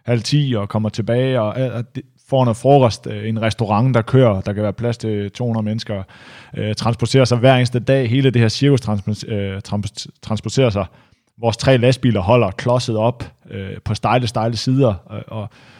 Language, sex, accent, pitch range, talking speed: Danish, male, native, 105-125 Hz, 180 wpm